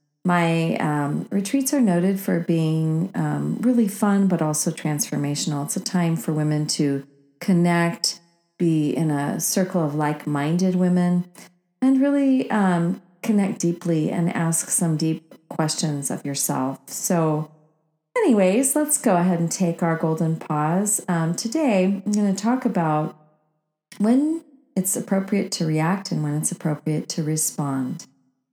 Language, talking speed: English, 140 wpm